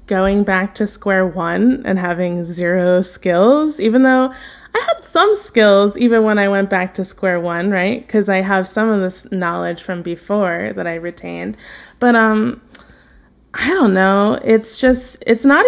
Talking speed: 170 wpm